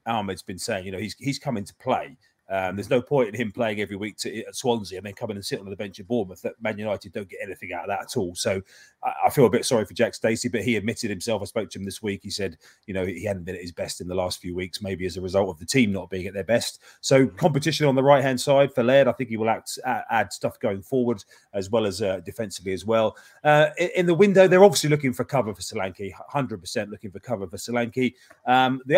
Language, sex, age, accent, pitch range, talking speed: English, male, 30-49, British, 110-140 Hz, 275 wpm